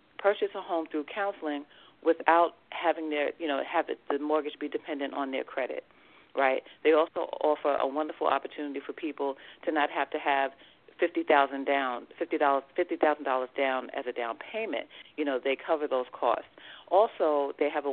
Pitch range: 140-160 Hz